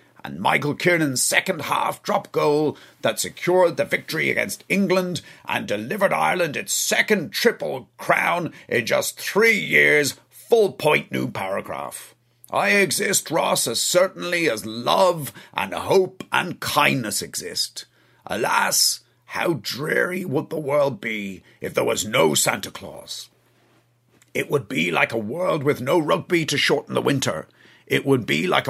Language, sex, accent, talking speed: English, male, British, 140 wpm